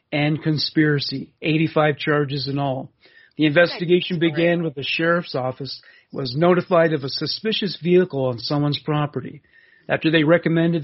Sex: male